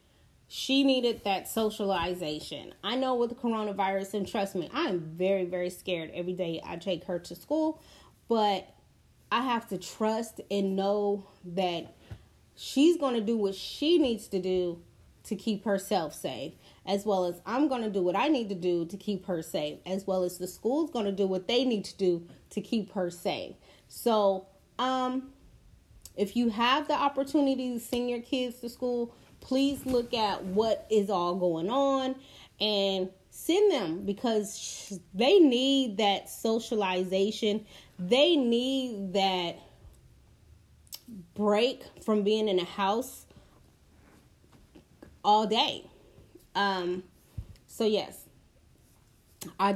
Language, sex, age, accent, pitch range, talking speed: English, female, 30-49, American, 185-245 Hz, 145 wpm